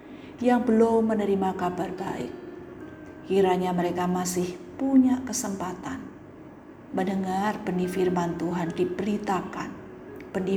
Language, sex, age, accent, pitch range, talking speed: Indonesian, female, 50-69, native, 175-205 Hz, 90 wpm